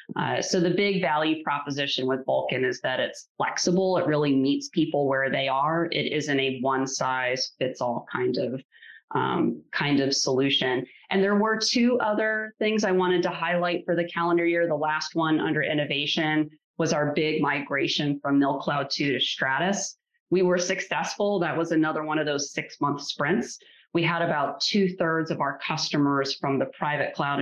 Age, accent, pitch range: 30-49, American, 135-170 Hz